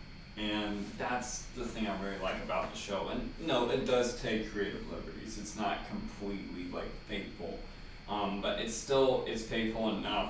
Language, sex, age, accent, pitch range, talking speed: English, male, 20-39, American, 105-115 Hz, 170 wpm